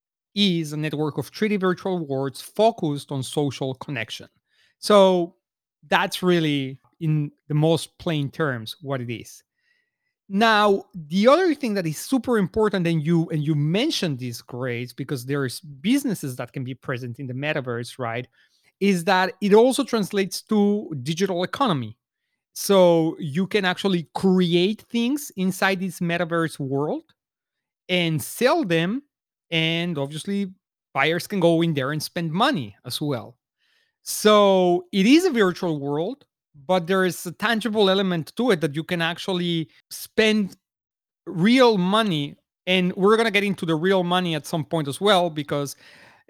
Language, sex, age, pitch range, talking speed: English, male, 40-59, 150-200 Hz, 155 wpm